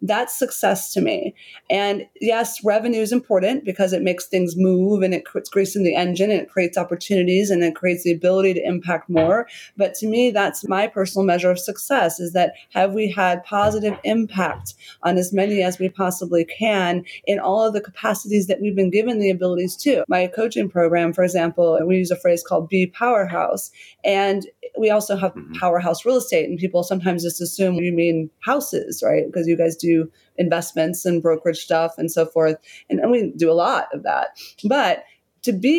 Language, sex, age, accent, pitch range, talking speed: English, female, 30-49, American, 175-200 Hz, 195 wpm